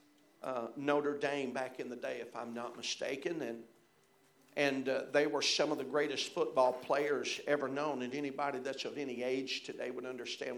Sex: male